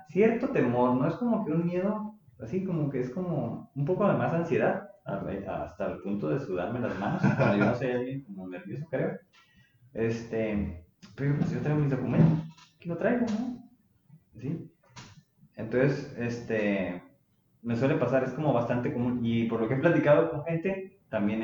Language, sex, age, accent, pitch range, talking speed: Spanish, male, 30-49, Mexican, 105-160 Hz, 180 wpm